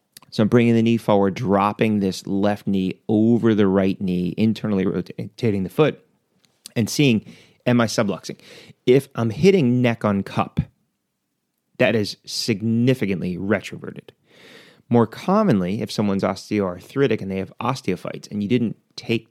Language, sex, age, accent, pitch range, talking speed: English, male, 30-49, American, 95-120 Hz, 145 wpm